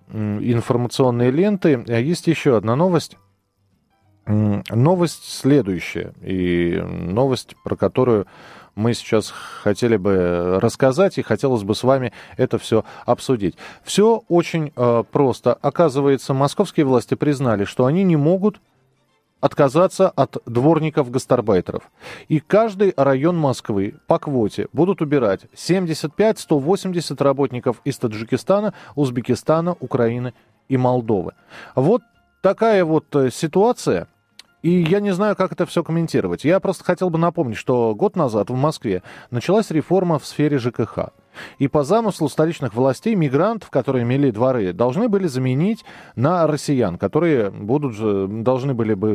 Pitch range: 115-165 Hz